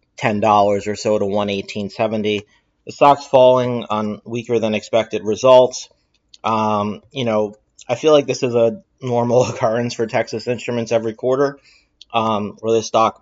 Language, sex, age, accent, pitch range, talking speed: English, male, 30-49, American, 105-120 Hz, 150 wpm